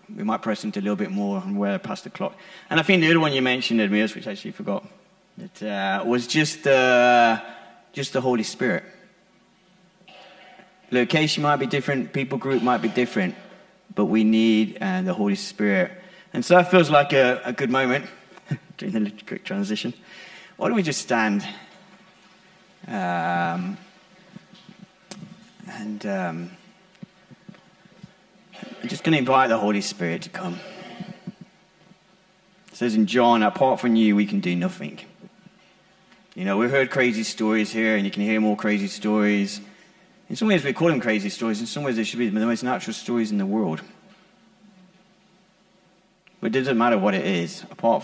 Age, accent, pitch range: 30-49, British, 125-190 Hz